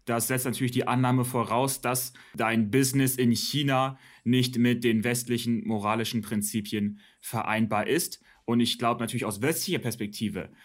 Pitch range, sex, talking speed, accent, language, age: 120-150 Hz, male, 145 wpm, German, German, 30-49